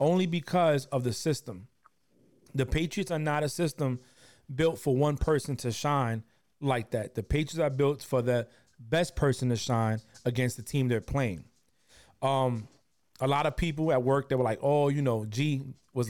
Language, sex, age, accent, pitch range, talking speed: English, male, 30-49, American, 120-150 Hz, 185 wpm